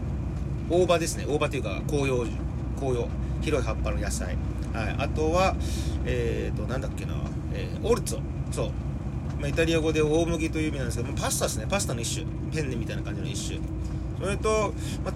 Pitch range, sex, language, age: 65-95 Hz, male, Japanese, 40-59